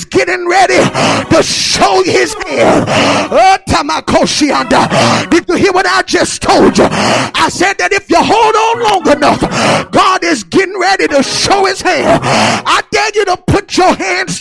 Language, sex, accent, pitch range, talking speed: English, male, American, 305-370 Hz, 155 wpm